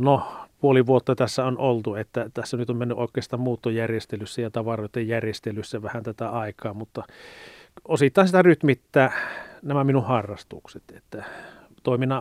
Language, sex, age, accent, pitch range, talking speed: Finnish, male, 40-59, native, 115-130 Hz, 135 wpm